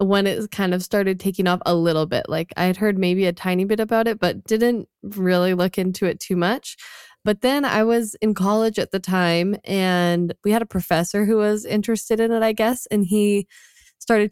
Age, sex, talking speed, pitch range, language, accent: 20-39, female, 220 wpm, 180-215 Hz, English, American